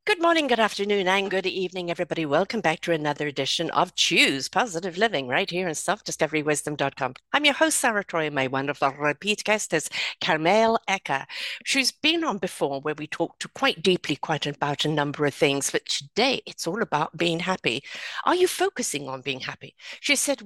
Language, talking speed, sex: English, 190 wpm, female